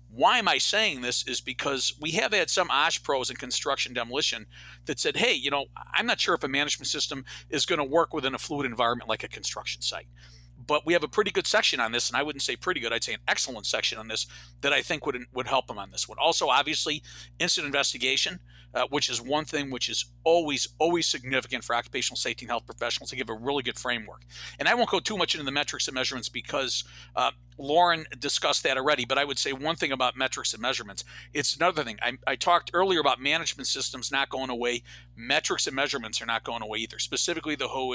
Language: English